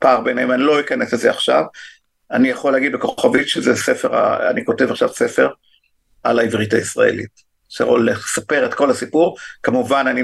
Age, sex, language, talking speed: 50-69, male, Hebrew, 160 wpm